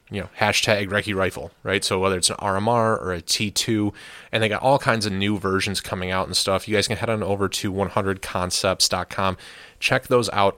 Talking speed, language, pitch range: 210 wpm, English, 95-110 Hz